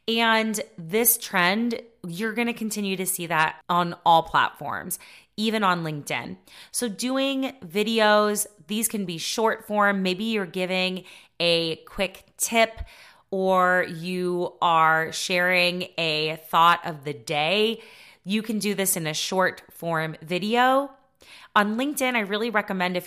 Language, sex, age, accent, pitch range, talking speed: English, female, 20-39, American, 175-225 Hz, 140 wpm